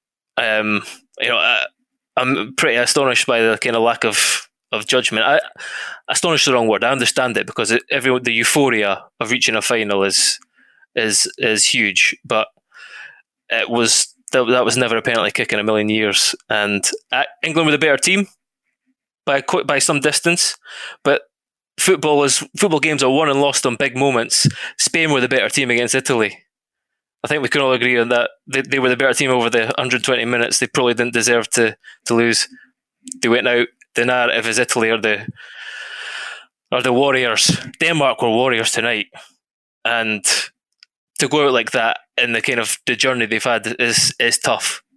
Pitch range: 115-160 Hz